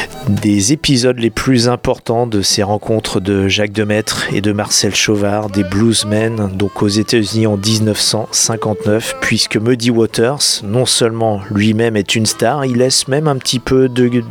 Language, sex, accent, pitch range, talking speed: French, male, French, 105-125 Hz, 160 wpm